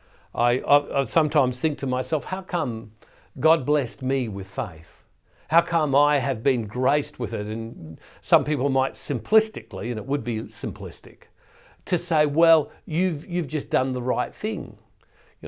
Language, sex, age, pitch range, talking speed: English, male, 60-79, 120-155 Hz, 165 wpm